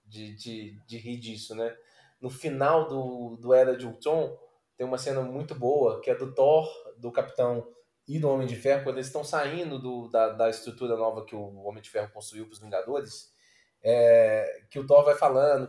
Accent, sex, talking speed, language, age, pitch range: Brazilian, male, 205 wpm, Portuguese, 20-39, 120-165 Hz